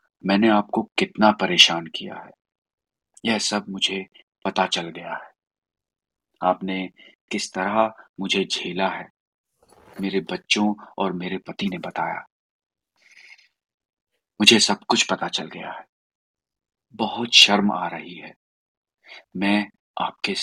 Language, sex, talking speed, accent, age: Hindi, male, 120 wpm, native, 40-59